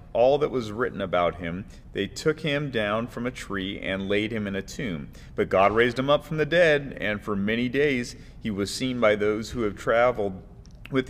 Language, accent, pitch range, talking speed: English, American, 100-125 Hz, 215 wpm